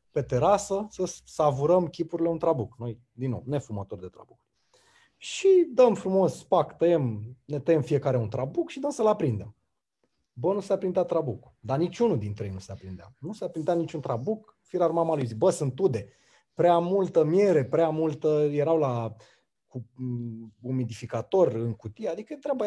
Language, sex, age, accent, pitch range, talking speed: Romanian, male, 30-49, native, 120-175 Hz, 170 wpm